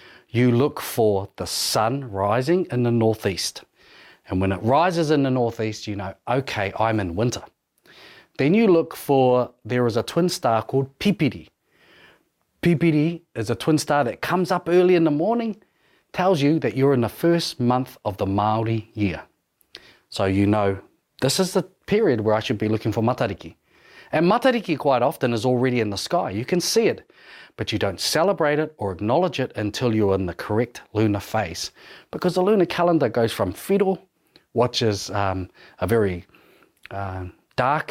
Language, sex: English, male